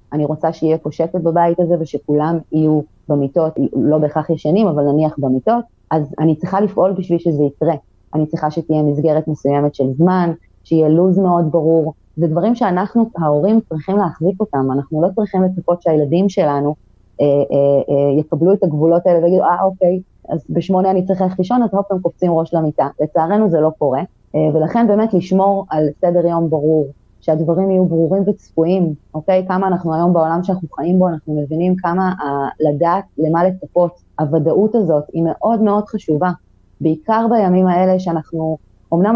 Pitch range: 155-185 Hz